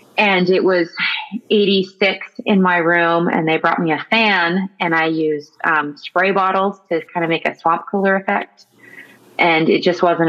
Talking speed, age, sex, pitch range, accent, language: 180 wpm, 30-49, female, 170-195 Hz, American, English